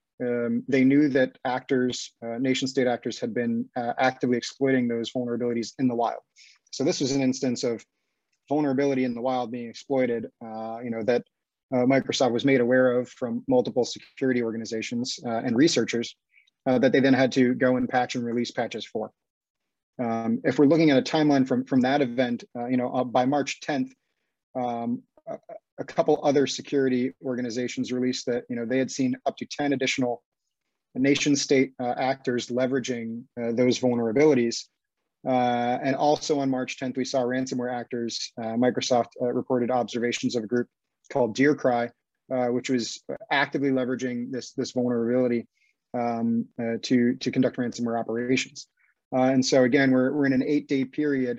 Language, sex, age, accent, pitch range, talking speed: English, male, 30-49, American, 120-135 Hz, 175 wpm